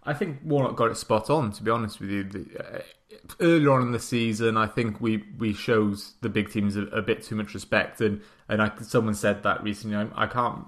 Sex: male